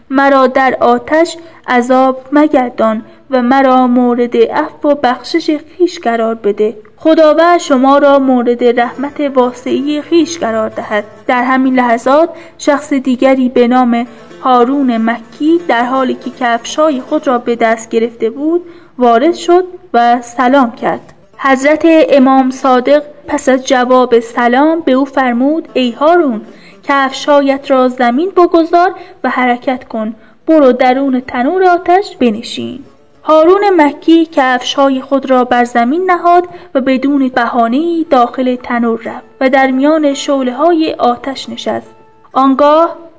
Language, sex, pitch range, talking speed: Persian, female, 245-310 Hz, 130 wpm